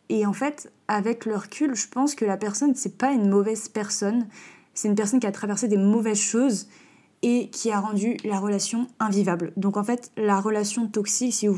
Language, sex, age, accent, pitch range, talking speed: French, female, 20-39, French, 195-220 Hz, 205 wpm